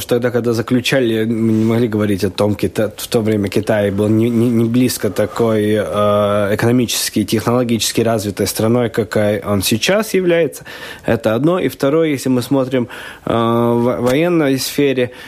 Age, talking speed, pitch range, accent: 20-39, 145 wpm, 105-125 Hz, native